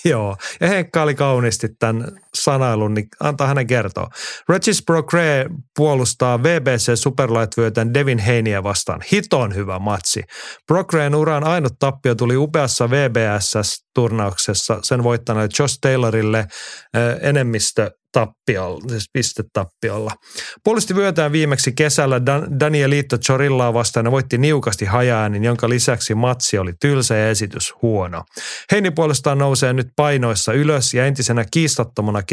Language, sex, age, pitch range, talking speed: Finnish, male, 30-49, 110-140 Hz, 115 wpm